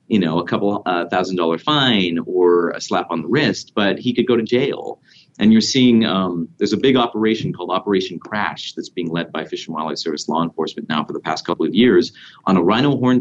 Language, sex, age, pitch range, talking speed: English, male, 30-49, 80-110 Hz, 235 wpm